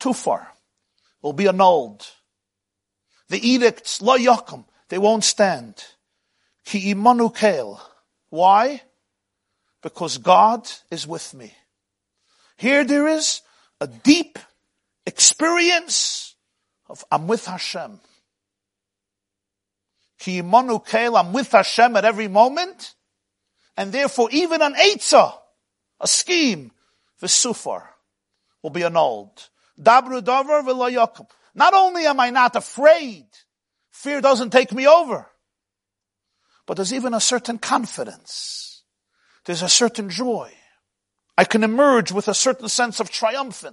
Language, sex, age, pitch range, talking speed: English, male, 50-69, 180-255 Hz, 100 wpm